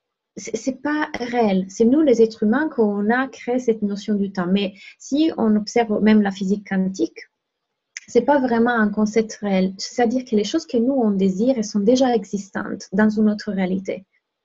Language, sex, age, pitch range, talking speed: French, female, 30-49, 205-245 Hz, 195 wpm